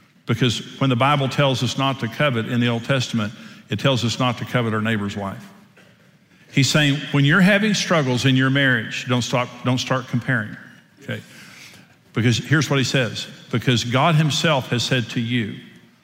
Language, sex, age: English, male, 50-69